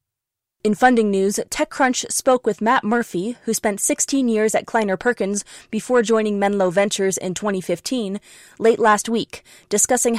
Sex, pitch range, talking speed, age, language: female, 195-240 Hz, 145 wpm, 20-39, English